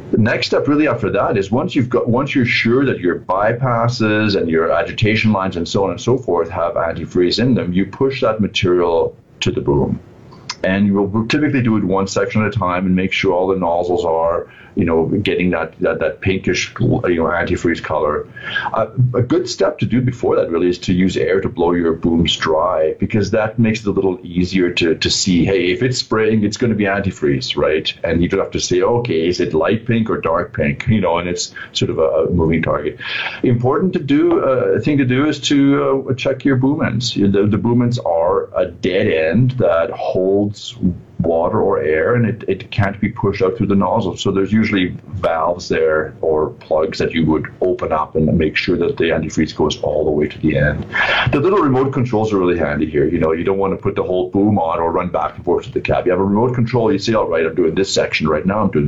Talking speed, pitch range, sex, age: 235 wpm, 90-120 Hz, male, 40-59